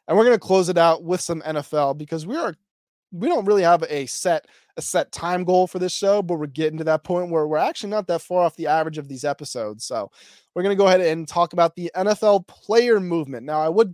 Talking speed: 250 wpm